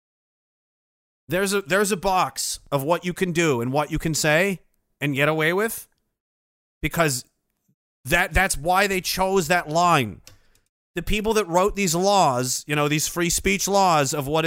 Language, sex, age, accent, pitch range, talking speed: English, male, 30-49, American, 160-215 Hz, 170 wpm